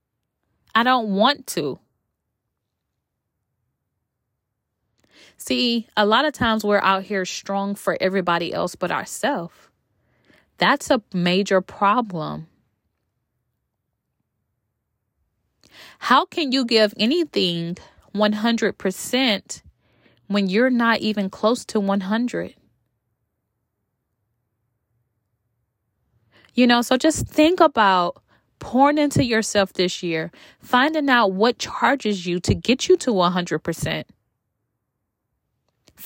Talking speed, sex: 95 wpm, female